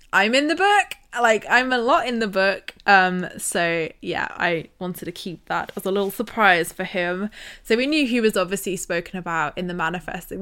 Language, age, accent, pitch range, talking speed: English, 20-39, British, 170-210 Hz, 205 wpm